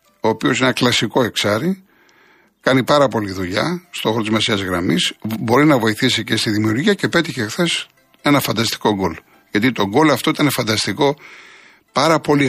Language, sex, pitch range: Greek, male, 115-145 Hz